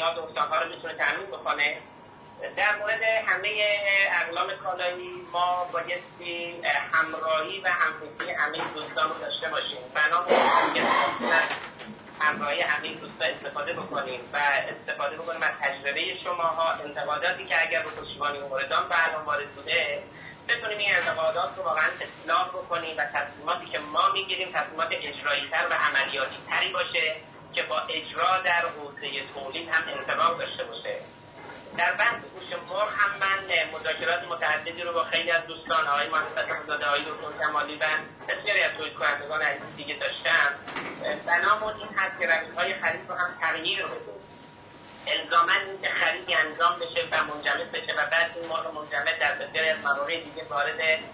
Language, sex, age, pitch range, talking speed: Persian, male, 30-49, 155-180 Hz, 145 wpm